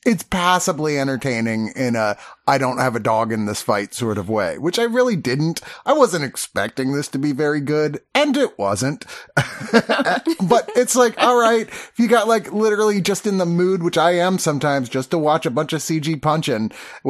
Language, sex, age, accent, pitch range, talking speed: English, male, 30-49, American, 125-190 Hz, 180 wpm